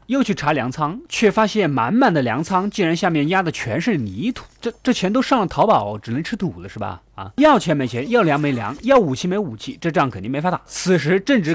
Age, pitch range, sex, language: 20-39, 145-230 Hz, male, Chinese